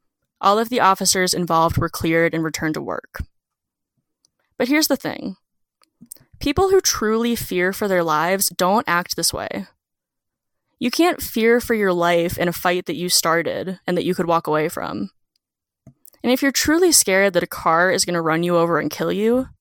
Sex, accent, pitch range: female, American, 170-235 Hz